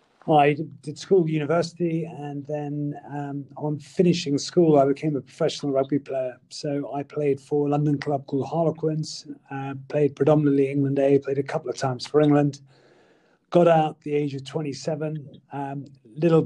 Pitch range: 140-155 Hz